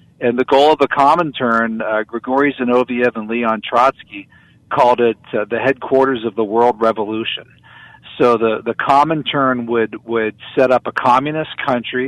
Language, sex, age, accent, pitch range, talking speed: English, male, 40-59, American, 115-130 Hz, 170 wpm